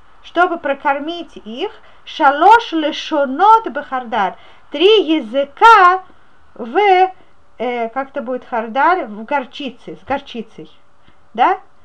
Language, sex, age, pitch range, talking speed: Russian, female, 30-49, 255-350 Hz, 105 wpm